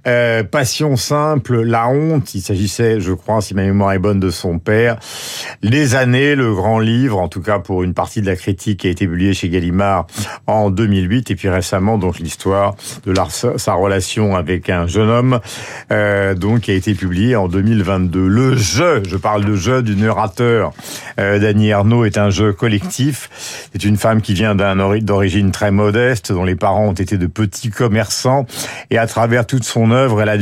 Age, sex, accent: 50-69, male, French